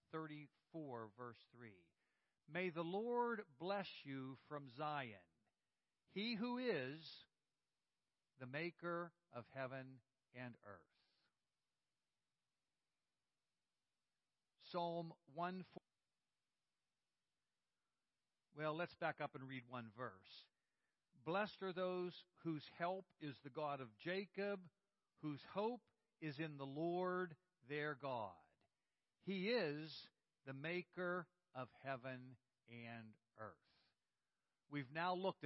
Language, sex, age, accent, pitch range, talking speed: English, male, 60-79, American, 135-180 Hz, 100 wpm